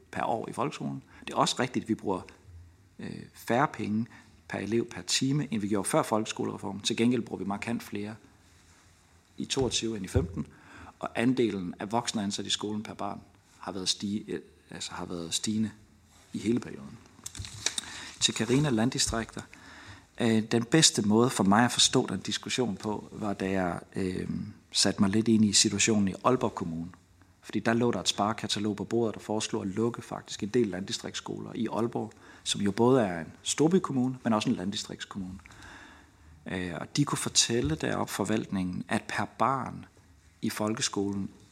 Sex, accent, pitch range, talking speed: male, native, 95-115 Hz, 170 wpm